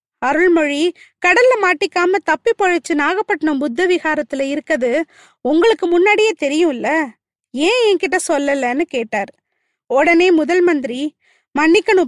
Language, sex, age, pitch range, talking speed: Tamil, female, 20-39, 290-390 Hz, 80 wpm